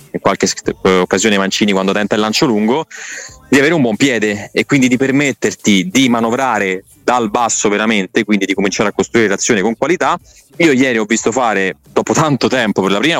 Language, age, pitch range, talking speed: Italian, 20-39, 105-125 Hz, 190 wpm